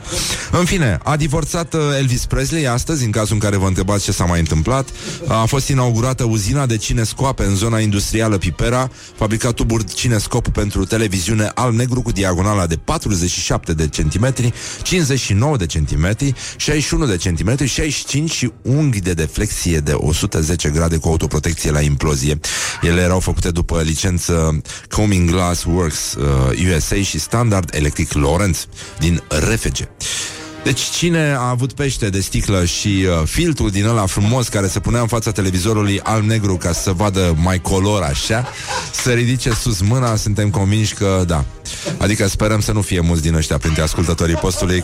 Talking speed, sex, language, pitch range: 160 wpm, male, Romanian, 85-120 Hz